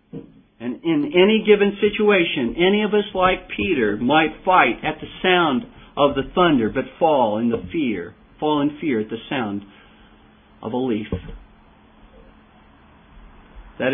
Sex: male